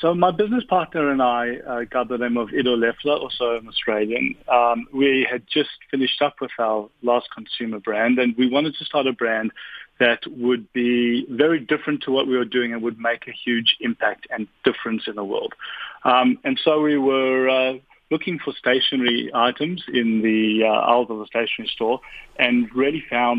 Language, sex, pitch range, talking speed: English, male, 115-145 Hz, 190 wpm